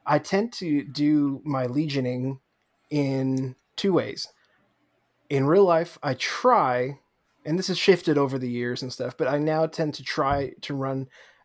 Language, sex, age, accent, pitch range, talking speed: English, male, 20-39, American, 135-155 Hz, 165 wpm